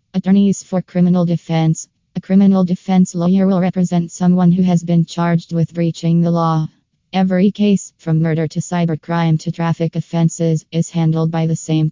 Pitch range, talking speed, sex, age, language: 160-180 Hz, 165 wpm, female, 20-39, English